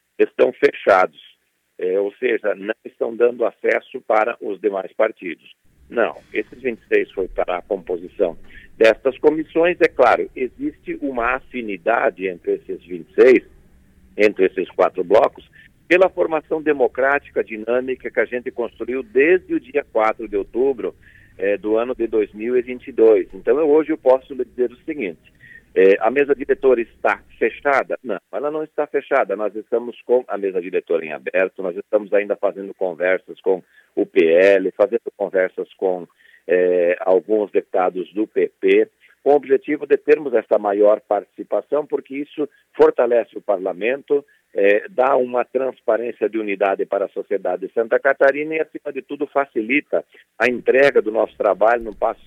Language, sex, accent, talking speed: Portuguese, male, Brazilian, 155 wpm